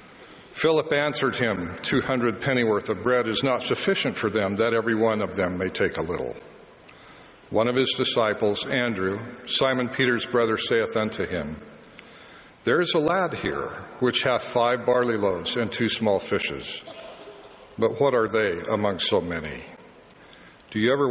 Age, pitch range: 60-79, 110-130 Hz